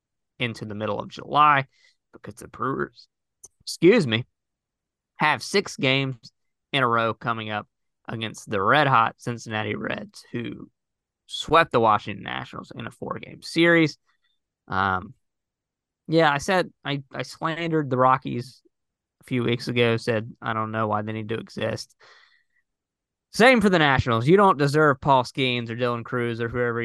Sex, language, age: male, English, 20-39